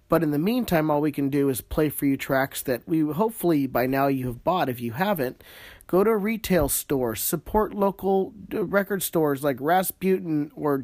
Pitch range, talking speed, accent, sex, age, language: 130-180 Hz, 200 wpm, American, male, 40-59, English